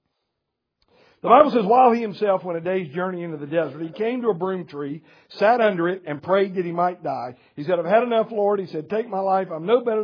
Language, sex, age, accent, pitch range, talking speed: English, male, 60-79, American, 160-210 Hz, 250 wpm